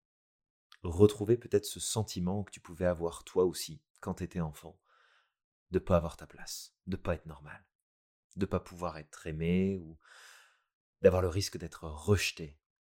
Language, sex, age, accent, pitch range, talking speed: French, male, 30-49, French, 80-95 Hz, 170 wpm